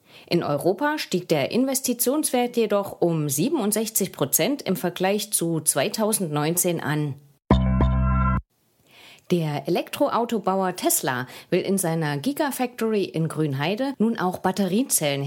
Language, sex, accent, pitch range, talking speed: English, female, German, 150-230 Hz, 100 wpm